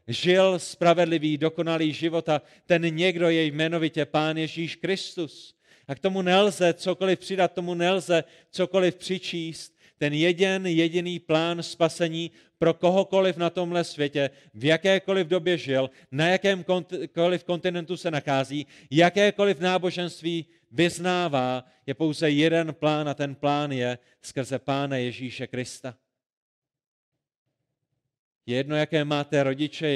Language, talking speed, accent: Czech, 125 wpm, native